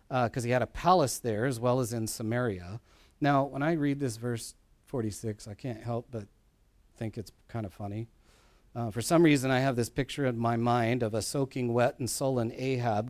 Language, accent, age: English, American, 50-69